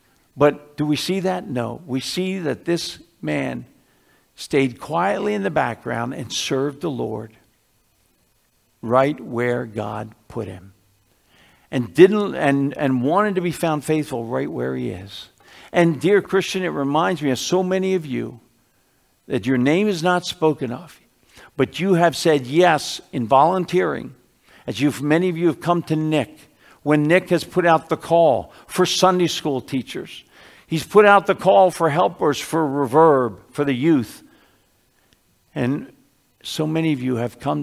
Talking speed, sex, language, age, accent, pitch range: 165 wpm, male, English, 60-79, American, 130-180 Hz